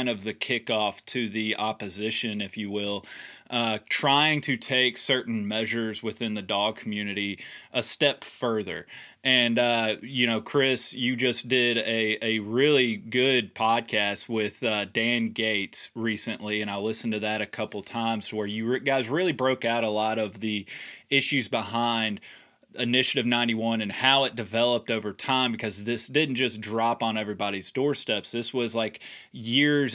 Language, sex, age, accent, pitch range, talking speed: English, male, 20-39, American, 110-125 Hz, 160 wpm